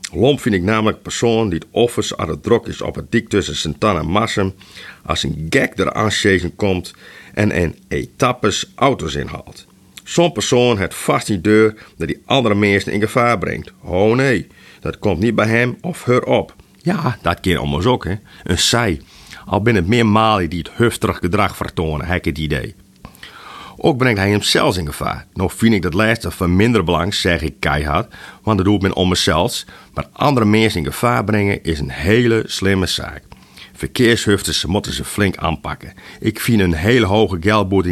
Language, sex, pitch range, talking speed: Dutch, male, 90-115 Hz, 195 wpm